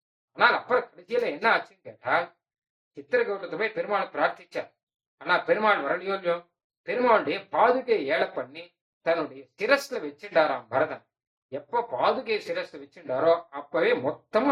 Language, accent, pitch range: Tamil, native, 155-230 Hz